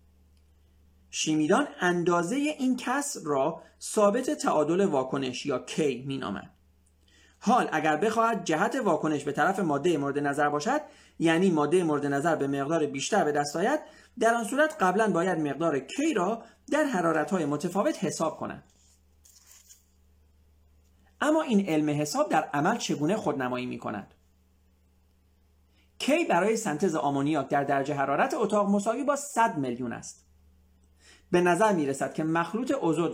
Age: 40-59